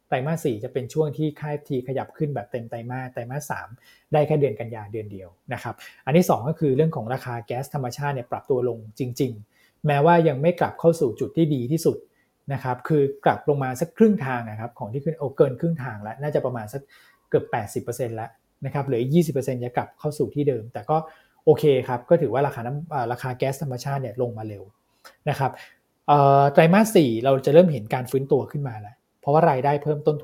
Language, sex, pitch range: Thai, male, 125-150 Hz